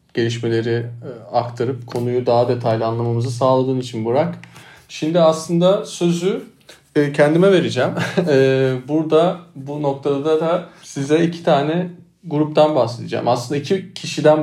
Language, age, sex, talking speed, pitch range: Turkish, 40-59, male, 110 wpm, 125-160 Hz